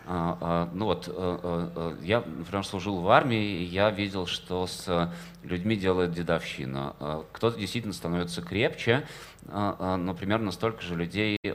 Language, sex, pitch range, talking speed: Russian, male, 85-100 Hz, 120 wpm